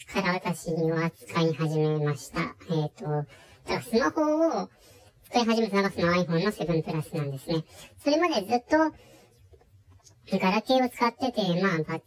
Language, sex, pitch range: Japanese, male, 155-220 Hz